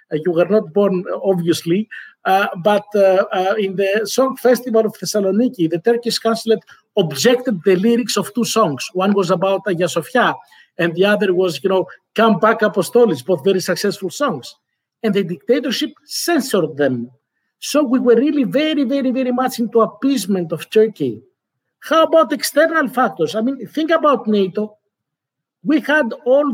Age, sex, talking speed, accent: 50-69, male, 160 wpm, Greek